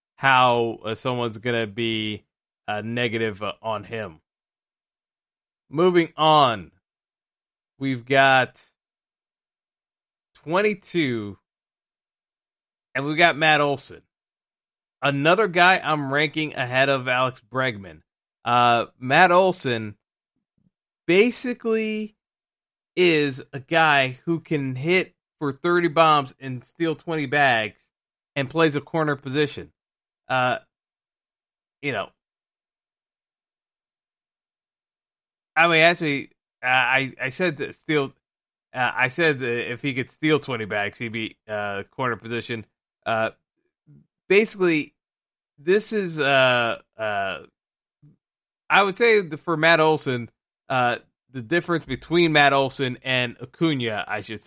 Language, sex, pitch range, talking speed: English, male, 115-160 Hz, 110 wpm